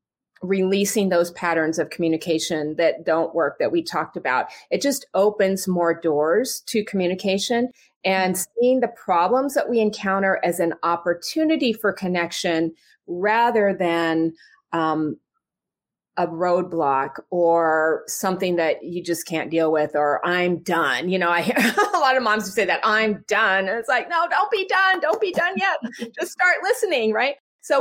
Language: English